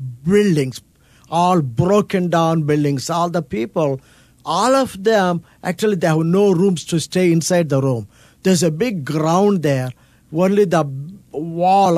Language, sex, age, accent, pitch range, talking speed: English, male, 50-69, Indian, 150-195 Hz, 145 wpm